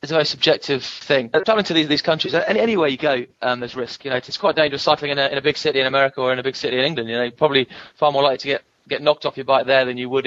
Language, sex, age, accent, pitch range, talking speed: English, male, 20-39, British, 125-140 Hz, 340 wpm